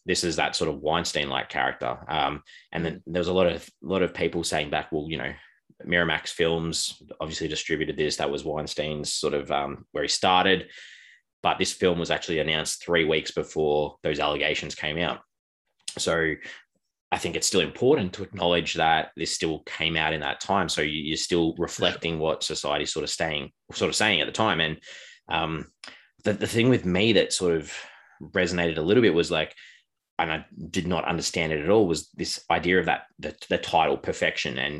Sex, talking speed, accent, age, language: male, 200 wpm, Australian, 20-39, English